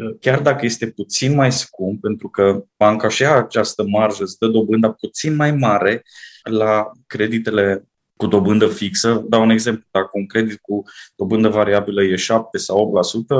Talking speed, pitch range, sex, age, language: 150 wpm, 105-125 Hz, male, 20-39, Romanian